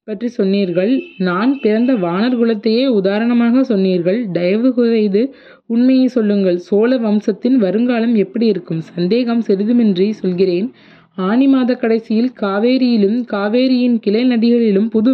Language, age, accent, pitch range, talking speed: Tamil, 20-39, native, 200-245 Hz, 105 wpm